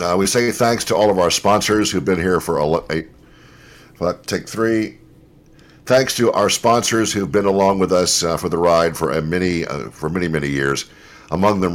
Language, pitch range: English, 75-100 Hz